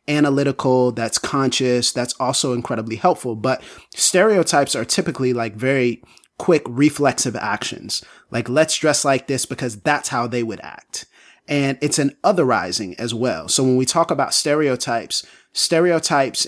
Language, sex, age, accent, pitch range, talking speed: English, male, 30-49, American, 125-150 Hz, 145 wpm